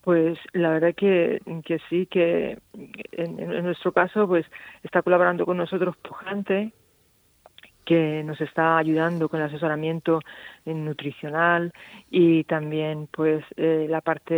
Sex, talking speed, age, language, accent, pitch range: female, 135 wpm, 40-59, Spanish, Spanish, 160-180 Hz